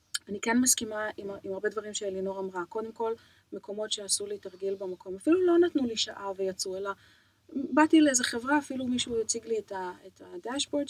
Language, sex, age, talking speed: Hebrew, female, 30-49, 180 wpm